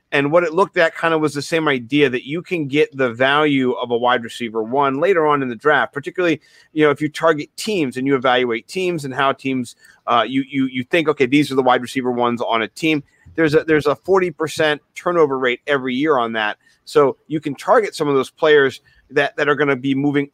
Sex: male